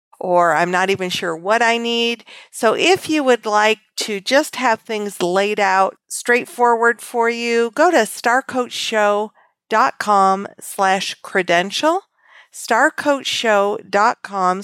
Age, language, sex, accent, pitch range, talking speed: 50-69, English, female, American, 195-240 Hz, 115 wpm